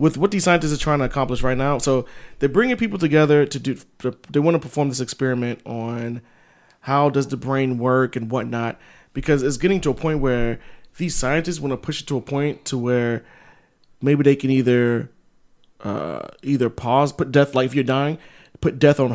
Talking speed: 205 wpm